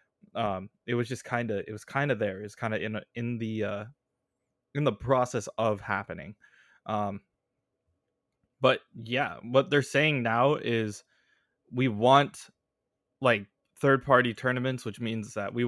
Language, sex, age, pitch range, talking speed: English, male, 20-39, 105-125 Hz, 160 wpm